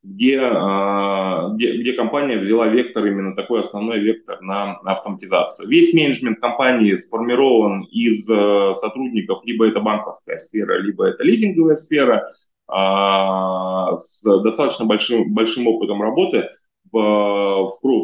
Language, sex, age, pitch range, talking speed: Russian, male, 20-39, 100-130 Hz, 115 wpm